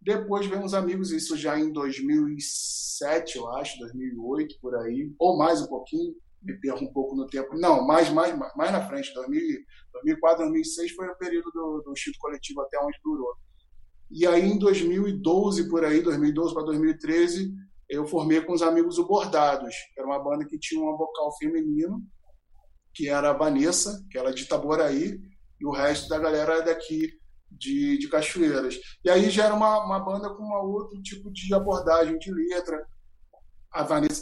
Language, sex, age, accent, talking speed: Portuguese, male, 20-39, Brazilian, 180 wpm